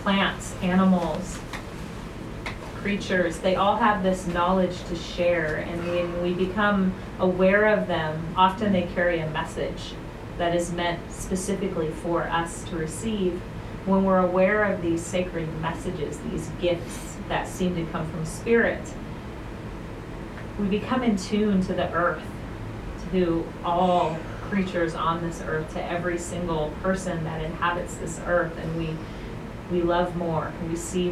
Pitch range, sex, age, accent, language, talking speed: 165-185 Hz, female, 40-59, American, English, 140 wpm